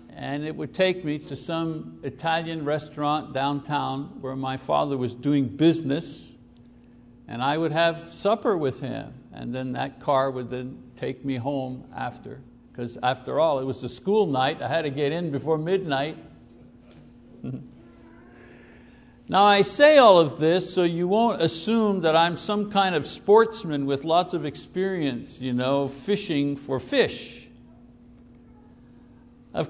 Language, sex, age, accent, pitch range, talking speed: English, male, 60-79, American, 130-180 Hz, 150 wpm